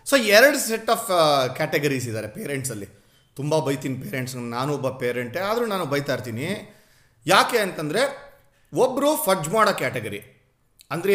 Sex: male